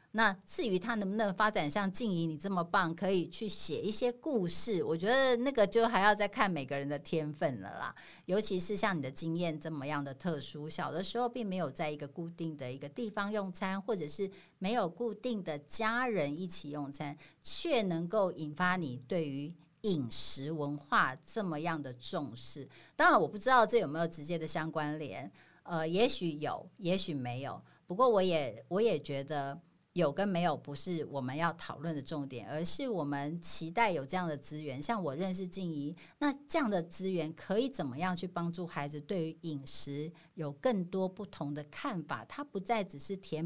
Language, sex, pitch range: Chinese, female, 150-205 Hz